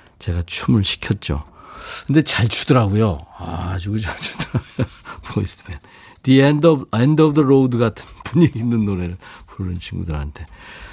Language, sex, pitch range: Korean, male, 100-140 Hz